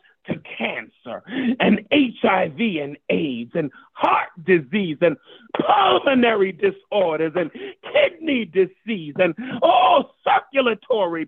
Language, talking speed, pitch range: English, 95 wpm, 190-285 Hz